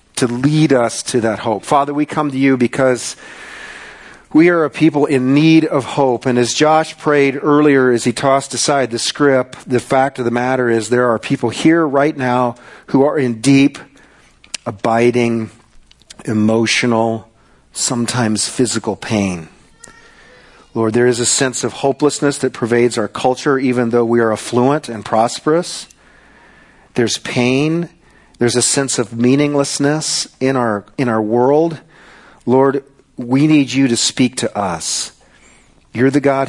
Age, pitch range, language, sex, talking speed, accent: 40-59, 115-140 Hz, English, male, 155 wpm, American